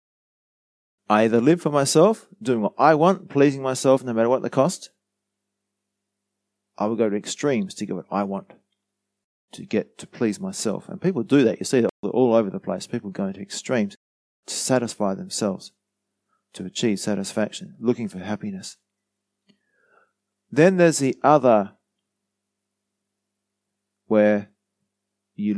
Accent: Australian